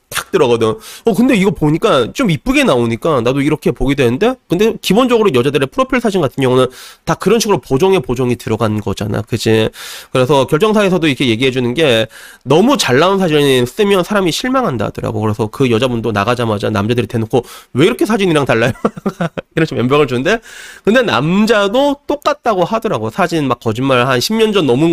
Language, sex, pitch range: Korean, male, 120-200 Hz